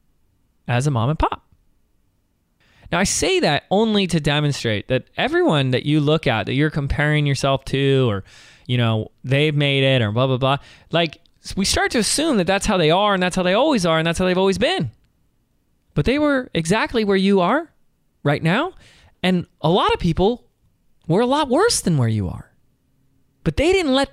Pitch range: 125-185 Hz